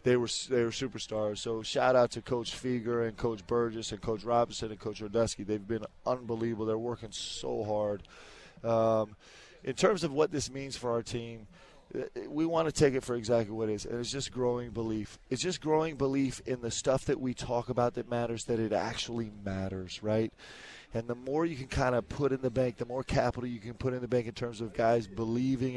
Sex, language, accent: male, English, American